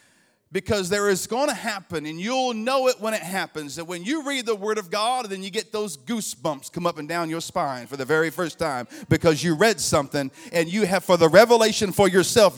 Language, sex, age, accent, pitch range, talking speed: English, male, 40-59, American, 210-300 Hz, 235 wpm